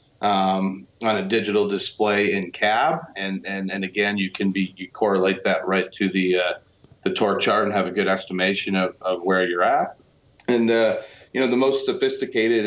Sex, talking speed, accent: male, 195 wpm, American